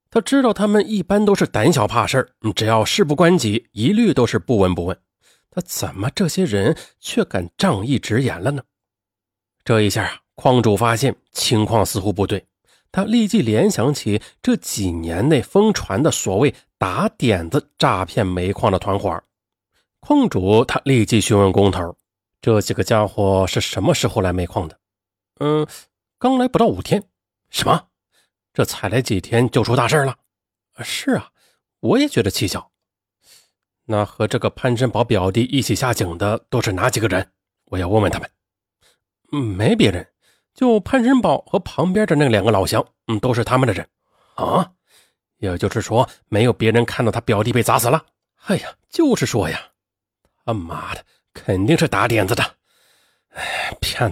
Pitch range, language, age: 100-145 Hz, Chinese, 30-49